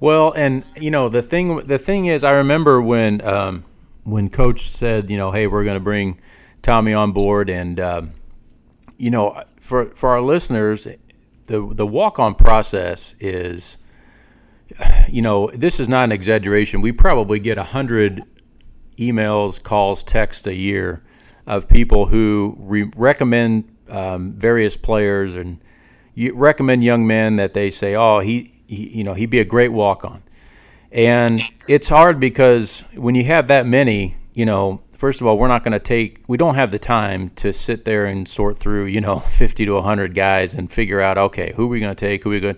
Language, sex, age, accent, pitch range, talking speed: English, male, 40-59, American, 100-120 Hz, 185 wpm